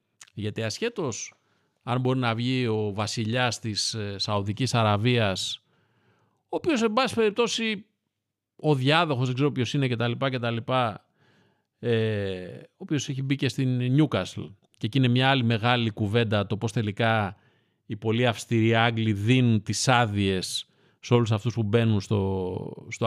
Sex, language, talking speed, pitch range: male, Greek, 155 wpm, 115-145 Hz